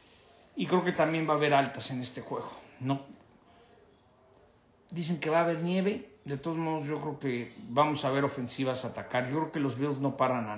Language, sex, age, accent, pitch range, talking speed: English, male, 50-69, Mexican, 135-165 Hz, 210 wpm